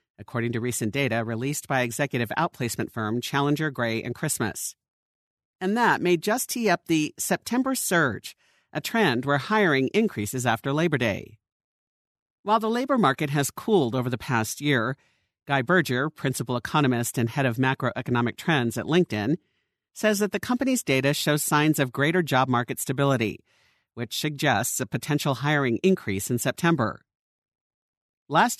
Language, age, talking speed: English, 50-69, 150 wpm